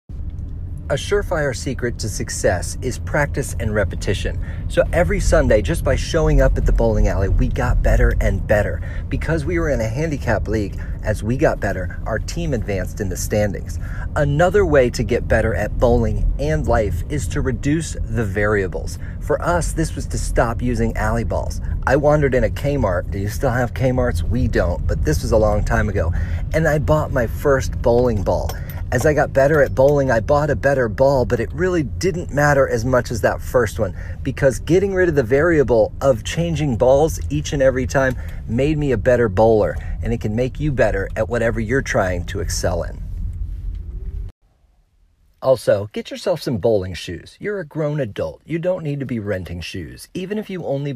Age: 40-59